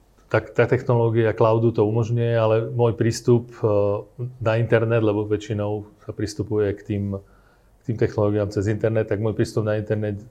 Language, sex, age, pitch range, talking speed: Slovak, male, 30-49, 105-120 Hz, 155 wpm